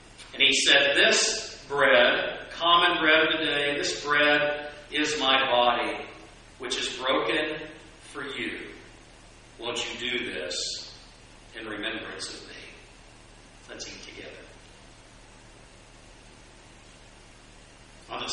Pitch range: 120-150 Hz